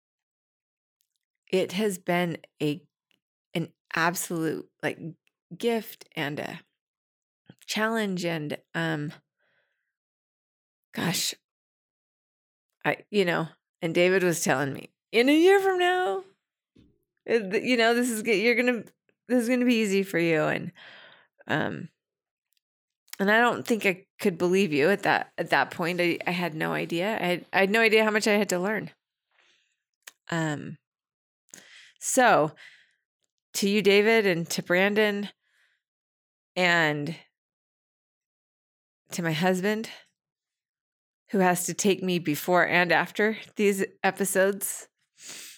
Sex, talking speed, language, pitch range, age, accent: female, 130 wpm, English, 165-215 Hz, 30-49, American